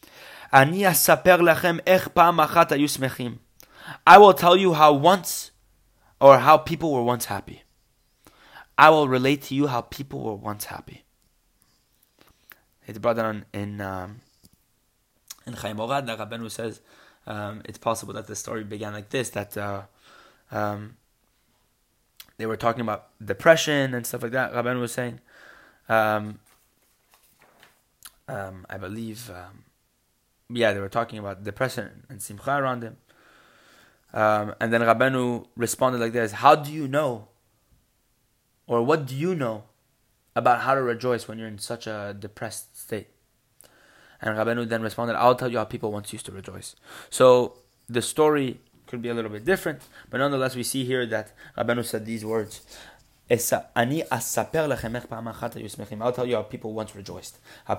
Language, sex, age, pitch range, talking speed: English, male, 20-39, 105-130 Hz, 145 wpm